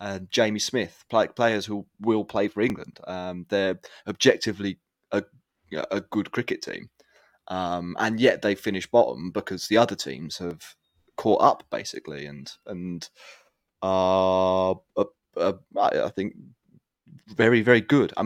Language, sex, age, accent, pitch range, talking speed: English, male, 30-49, British, 95-130 Hz, 150 wpm